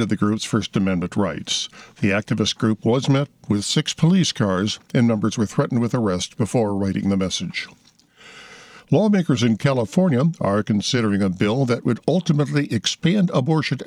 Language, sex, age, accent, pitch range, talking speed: English, male, 60-79, American, 105-140 Hz, 160 wpm